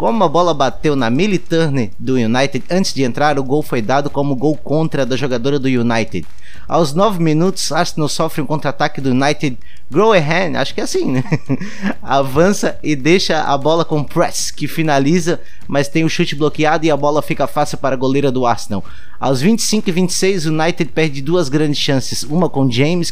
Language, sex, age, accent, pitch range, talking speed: Portuguese, male, 20-39, Brazilian, 135-165 Hz, 190 wpm